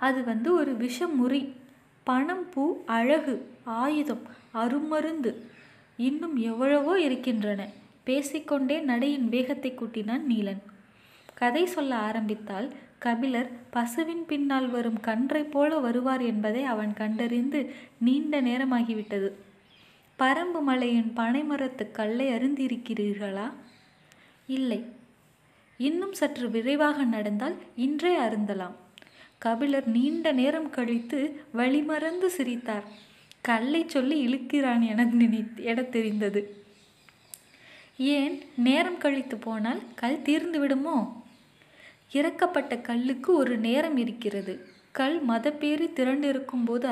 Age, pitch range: 20-39, 230-290 Hz